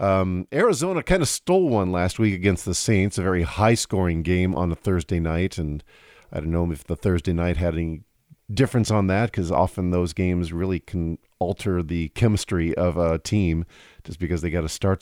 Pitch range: 85-115 Hz